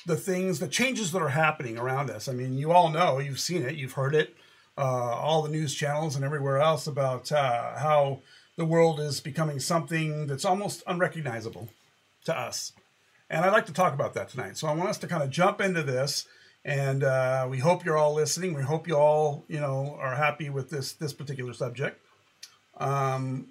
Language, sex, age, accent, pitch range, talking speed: English, male, 50-69, American, 135-165 Hz, 205 wpm